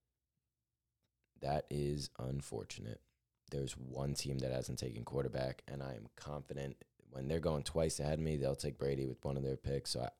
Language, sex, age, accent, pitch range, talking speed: English, male, 20-39, American, 65-80 Hz, 180 wpm